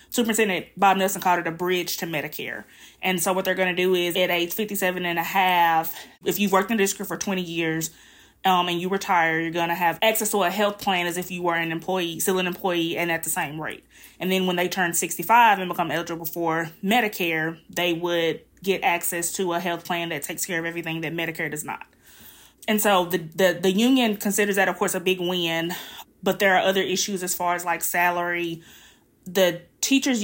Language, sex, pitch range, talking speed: English, female, 170-195 Hz, 220 wpm